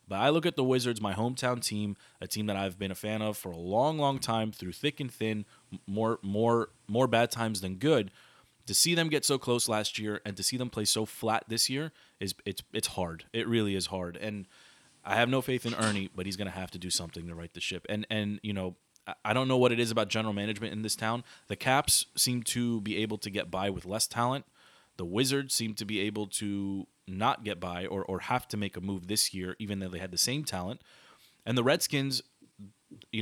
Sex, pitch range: male, 95-120 Hz